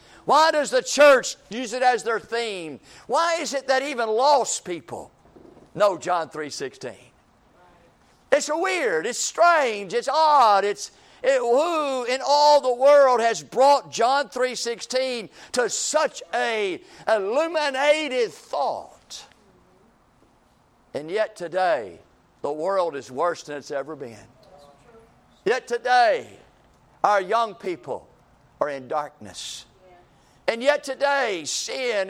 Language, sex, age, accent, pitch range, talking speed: English, male, 50-69, American, 210-280 Hz, 120 wpm